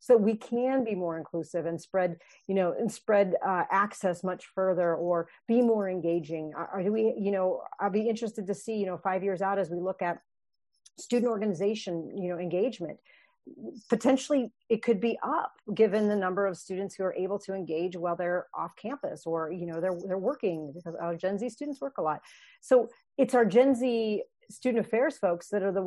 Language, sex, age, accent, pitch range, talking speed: English, female, 40-59, American, 185-230 Hz, 205 wpm